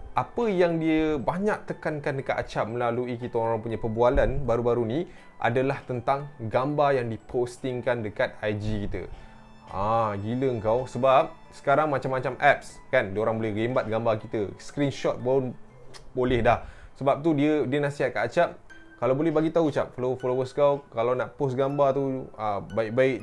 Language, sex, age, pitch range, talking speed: Malay, male, 20-39, 110-140 Hz, 160 wpm